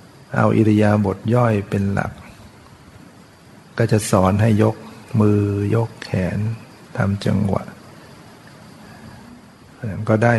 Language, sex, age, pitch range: Thai, male, 60-79, 105-120 Hz